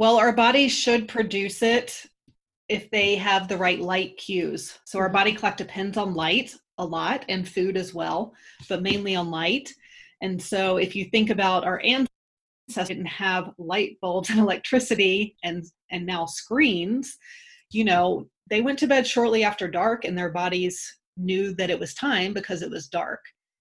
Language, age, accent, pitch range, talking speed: English, 30-49, American, 180-215 Hz, 180 wpm